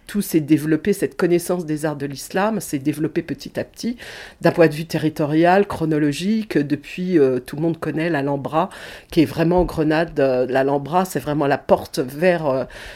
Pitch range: 140-180 Hz